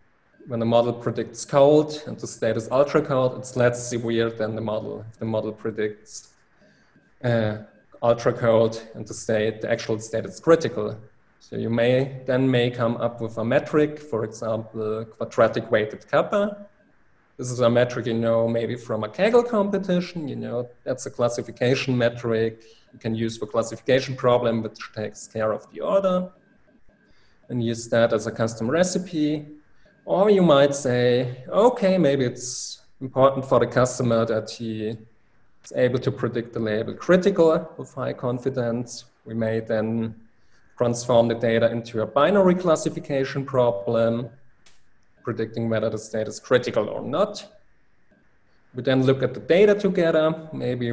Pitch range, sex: 115-135 Hz, male